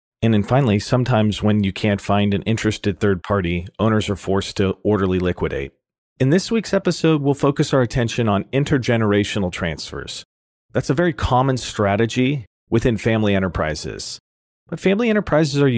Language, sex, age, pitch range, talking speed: English, male, 40-59, 95-125 Hz, 155 wpm